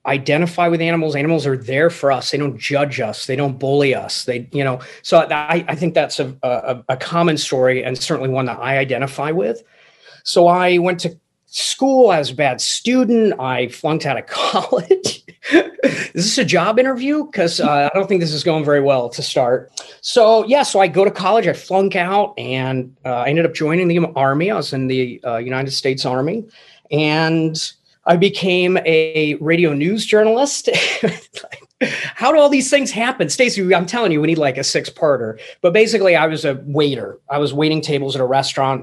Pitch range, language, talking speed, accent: 135-190 Hz, English, 200 wpm, American